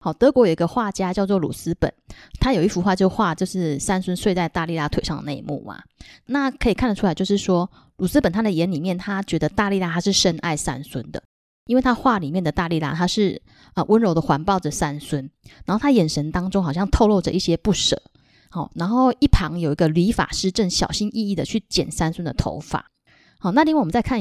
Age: 20-39